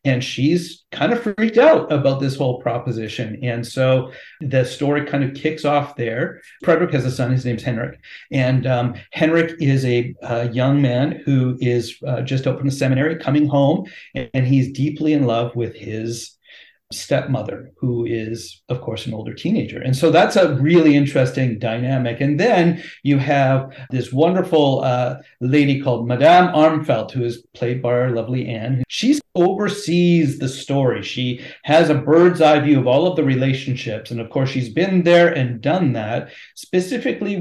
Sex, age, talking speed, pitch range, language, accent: male, 40-59, 175 wpm, 125-150 Hz, English, American